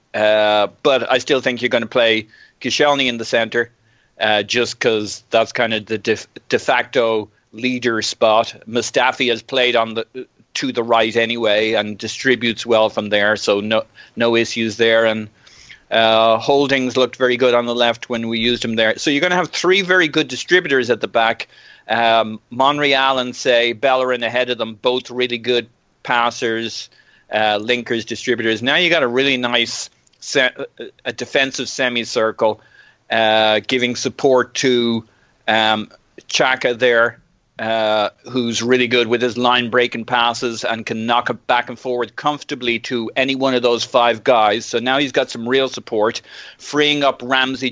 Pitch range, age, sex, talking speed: 115-130 Hz, 40-59, male, 170 wpm